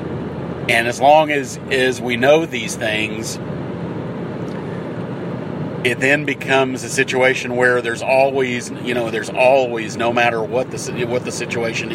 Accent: American